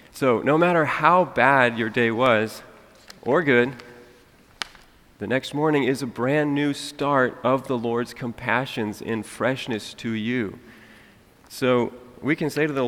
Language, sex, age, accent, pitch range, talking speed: English, male, 40-59, American, 110-135 Hz, 150 wpm